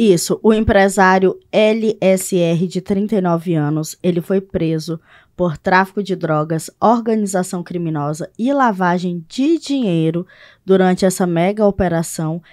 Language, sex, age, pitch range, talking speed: Portuguese, female, 20-39, 175-210 Hz, 115 wpm